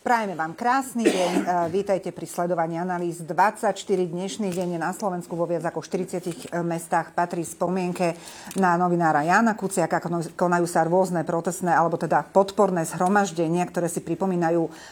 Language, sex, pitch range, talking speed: Slovak, female, 170-195 Hz, 140 wpm